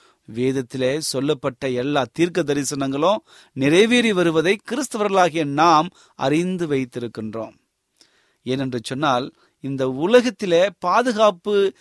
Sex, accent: male, native